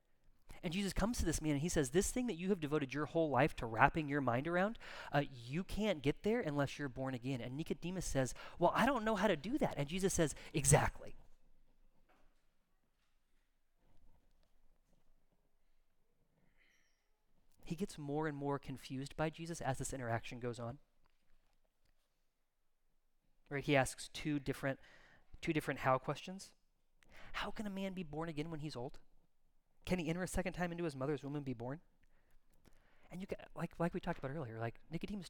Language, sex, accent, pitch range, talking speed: English, male, American, 135-185 Hz, 175 wpm